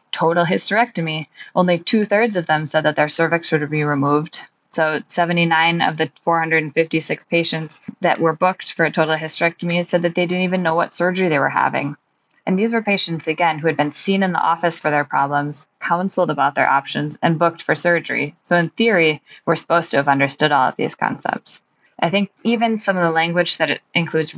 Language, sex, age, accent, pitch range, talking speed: English, female, 20-39, American, 155-185 Hz, 200 wpm